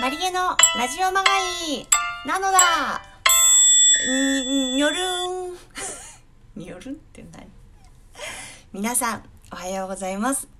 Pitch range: 180-275 Hz